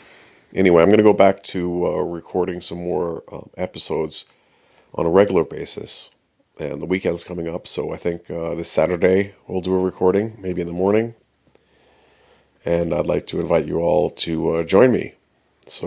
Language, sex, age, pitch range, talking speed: English, male, 40-59, 85-95 Hz, 180 wpm